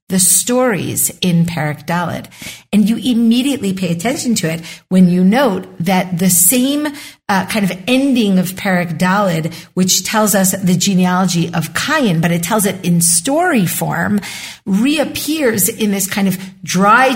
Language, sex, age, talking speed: English, female, 50-69, 150 wpm